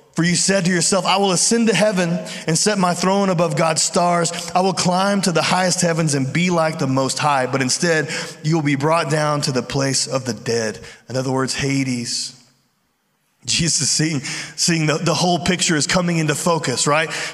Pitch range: 145-180 Hz